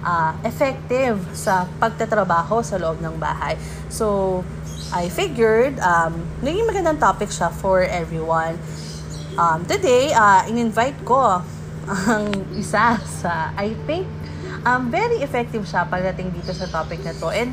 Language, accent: English, Filipino